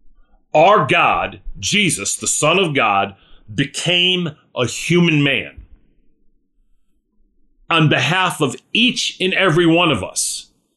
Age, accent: 40-59, American